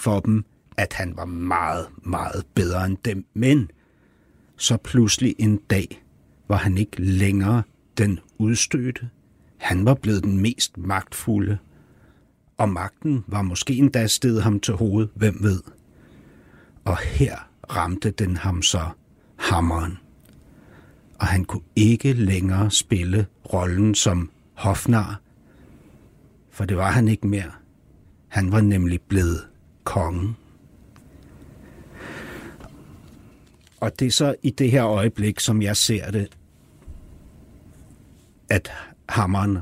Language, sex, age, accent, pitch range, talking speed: Danish, male, 60-79, native, 90-110 Hz, 120 wpm